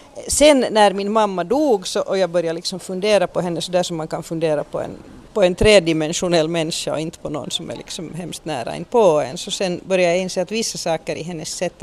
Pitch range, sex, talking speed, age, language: 170-220 Hz, female, 240 wpm, 40-59, Swedish